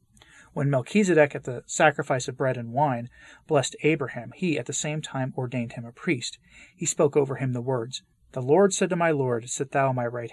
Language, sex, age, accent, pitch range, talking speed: English, male, 30-49, American, 125-155 Hz, 210 wpm